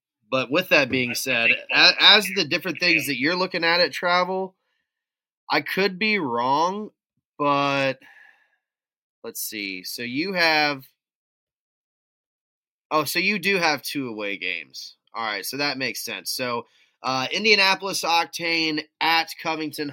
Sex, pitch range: male, 130-165 Hz